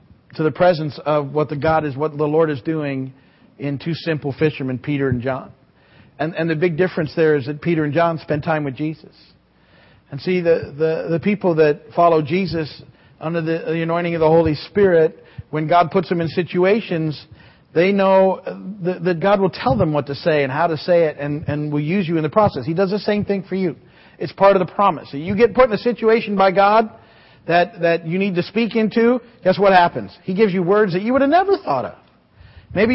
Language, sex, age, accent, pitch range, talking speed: English, male, 40-59, American, 150-195 Hz, 225 wpm